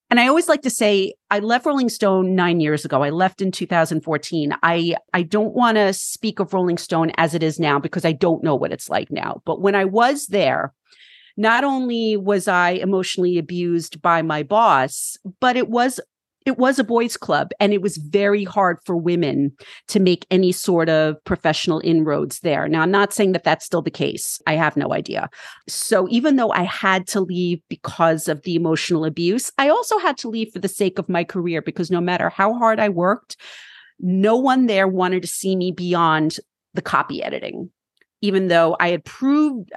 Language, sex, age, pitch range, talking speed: English, female, 40-59, 165-205 Hz, 200 wpm